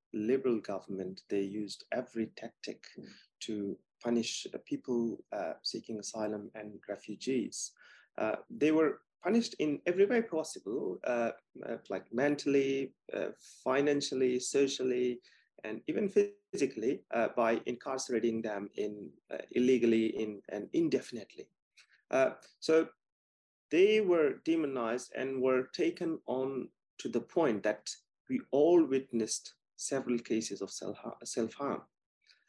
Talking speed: 115 wpm